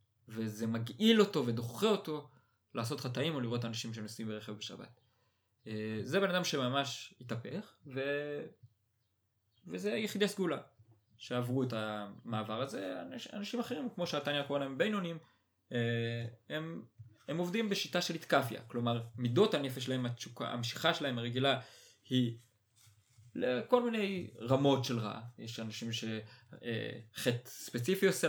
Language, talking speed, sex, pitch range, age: Hebrew, 120 wpm, male, 115-165 Hz, 20-39